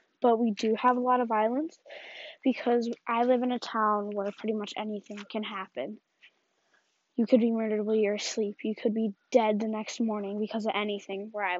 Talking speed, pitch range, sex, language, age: 200 wpm, 220-265 Hz, female, English, 10-29